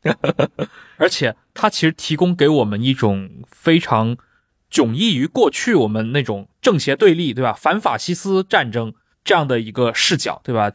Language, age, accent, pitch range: Chinese, 20-39, native, 115-155 Hz